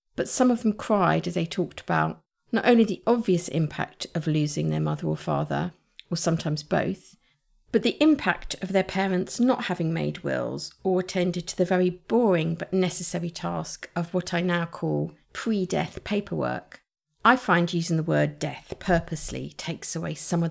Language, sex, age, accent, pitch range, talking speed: English, female, 50-69, British, 160-195 Hz, 175 wpm